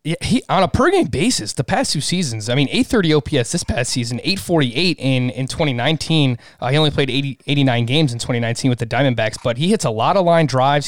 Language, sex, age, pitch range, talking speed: English, male, 20-39, 120-155 Hz, 225 wpm